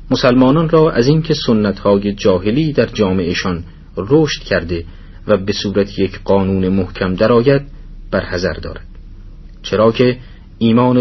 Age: 40-59